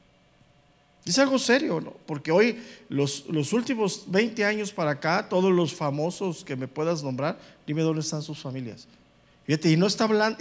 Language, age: English, 50-69